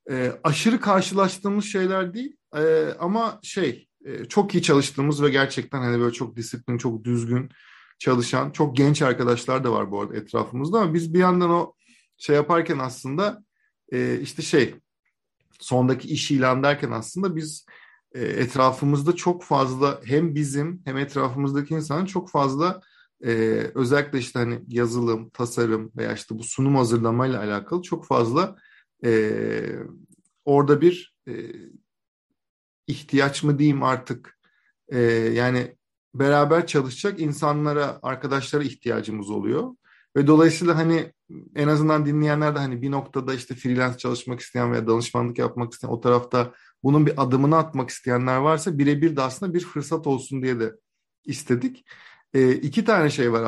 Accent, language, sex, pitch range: native, Turkish, male, 125-160 Hz